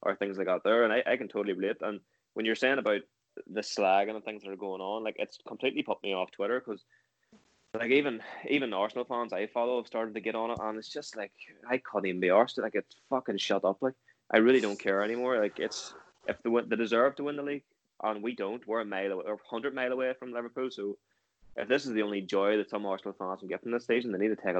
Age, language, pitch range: 10-29, English, 95-115 Hz